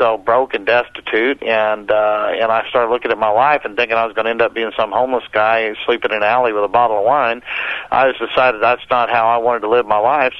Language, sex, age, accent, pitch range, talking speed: English, male, 50-69, American, 110-120 Hz, 265 wpm